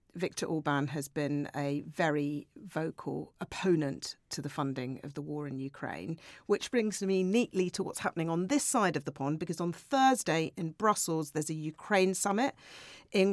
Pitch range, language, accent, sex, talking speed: 155-200 Hz, English, British, female, 175 wpm